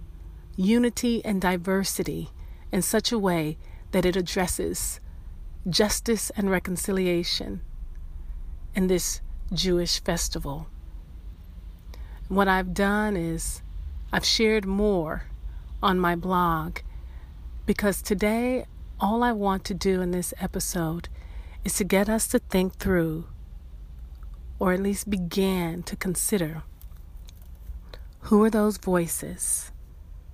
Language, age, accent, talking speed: English, 40-59, American, 105 wpm